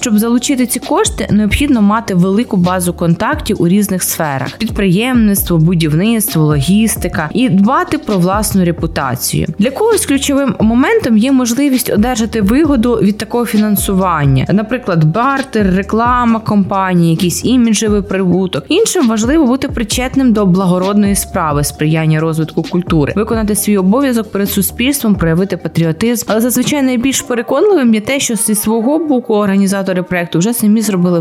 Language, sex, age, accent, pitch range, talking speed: Ukrainian, female, 20-39, native, 185-255 Hz, 135 wpm